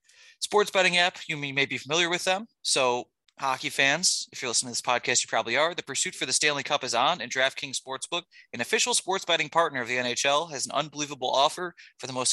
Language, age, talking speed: English, 30-49, 230 wpm